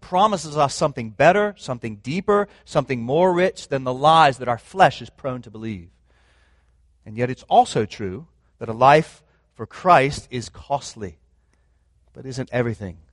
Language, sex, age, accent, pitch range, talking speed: English, male, 30-49, American, 120-170 Hz, 155 wpm